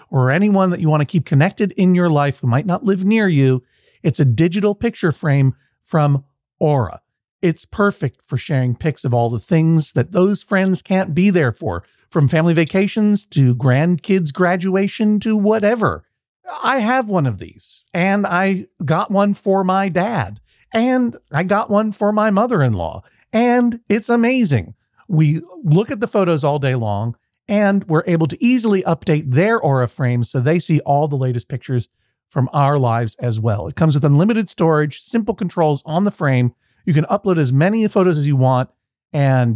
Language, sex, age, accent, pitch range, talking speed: English, male, 50-69, American, 130-195 Hz, 180 wpm